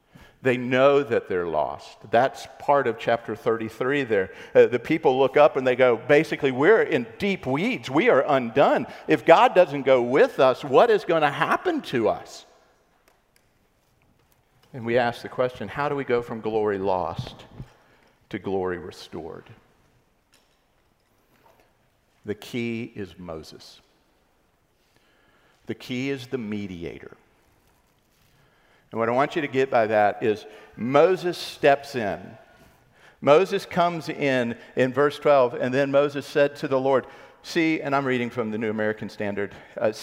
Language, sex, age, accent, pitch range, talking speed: English, male, 50-69, American, 110-150 Hz, 150 wpm